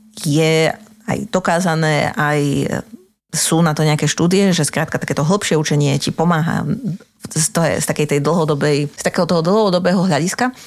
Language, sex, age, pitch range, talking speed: Slovak, female, 30-49, 150-185 Hz, 145 wpm